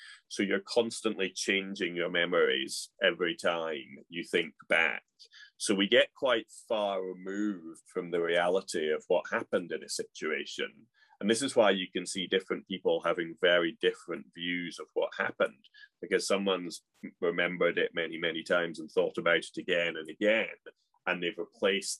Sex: male